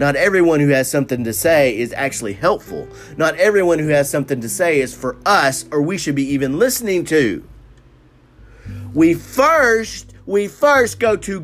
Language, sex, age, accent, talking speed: English, male, 40-59, American, 175 wpm